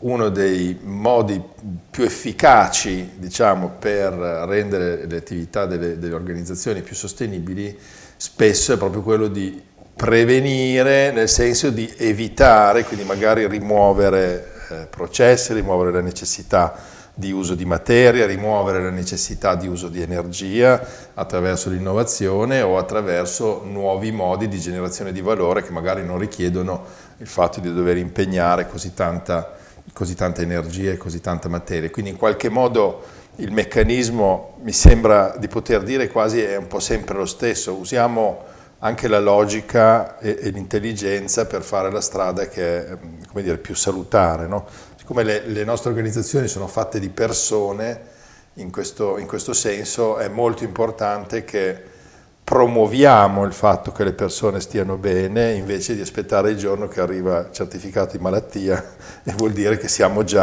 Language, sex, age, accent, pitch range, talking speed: Italian, male, 50-69, native, 90-110 Hz, 150 wpm